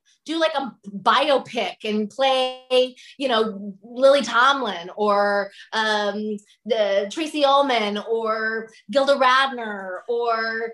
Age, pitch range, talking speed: 20-39, 220-275 Hz, 105 wpm